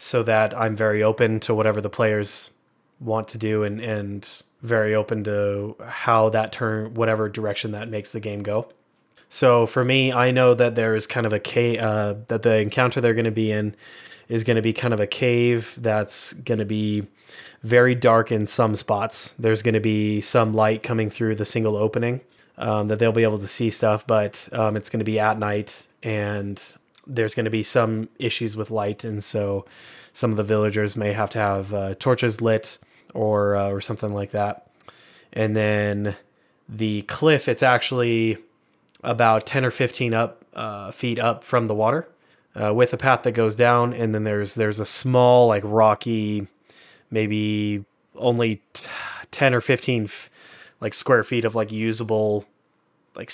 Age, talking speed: 20-39, 185 wpm